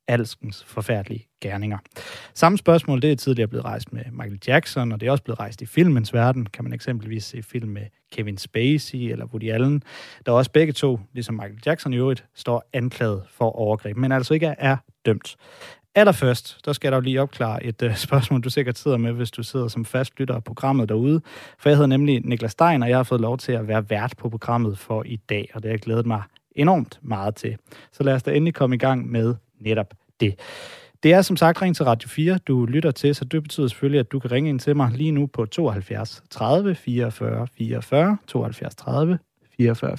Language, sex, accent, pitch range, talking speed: Danish, male, native, 115-145 Hz, 220 wpm